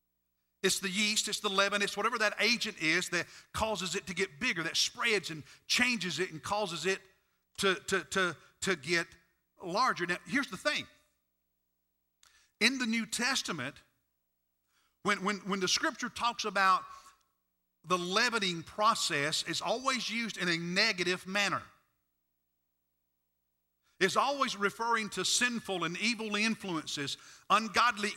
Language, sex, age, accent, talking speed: English, male, 50-69, American, 135 wpm